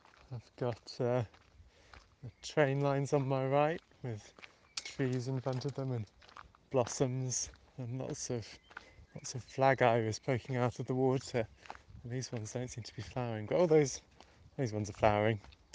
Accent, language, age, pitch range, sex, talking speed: British, English, 20-39, 110-140 Hz, male, 170 wpm